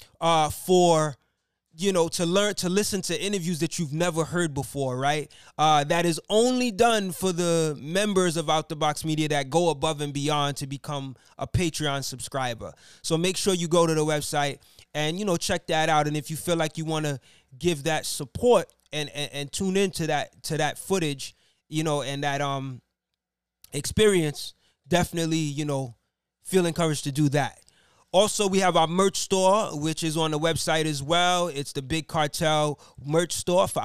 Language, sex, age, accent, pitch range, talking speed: English, male, 20-39, American, 150-180 Hz, 190 wpm